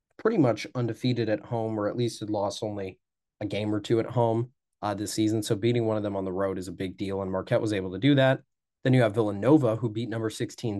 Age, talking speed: 30-49, 260 wpm